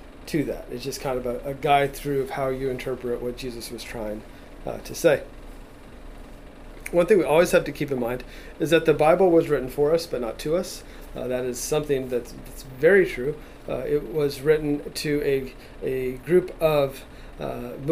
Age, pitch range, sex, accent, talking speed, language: 40-59, 130-155 Hz, male, American, 200 wpm, English